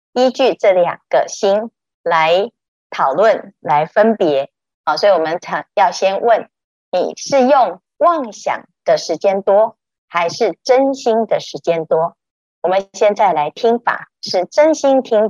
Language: Chinese